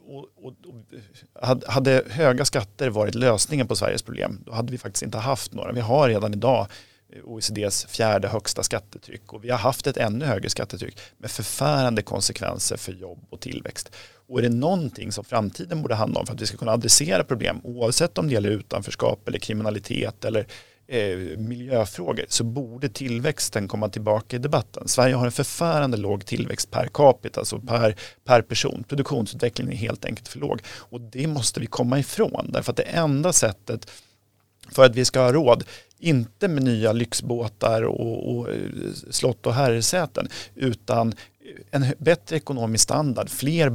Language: Swedish